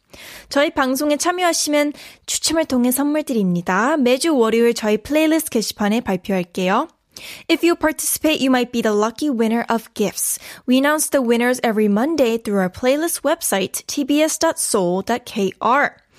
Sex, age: female, 10-29